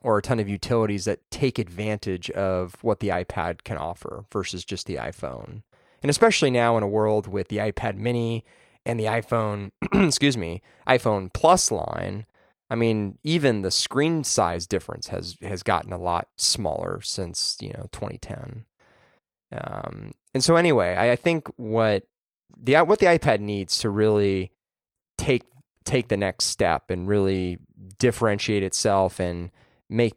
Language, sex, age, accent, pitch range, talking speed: English, male, 20-39, American, 95-120 Hz, 155 wpm